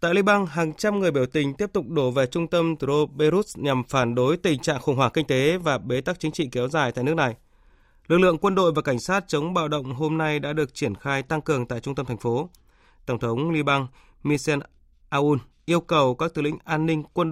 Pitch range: 125-160 Hz